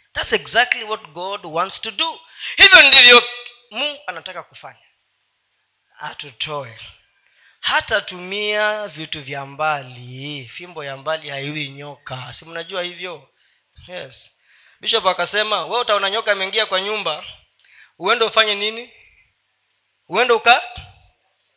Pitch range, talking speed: 160-225 Hz, 115 wpm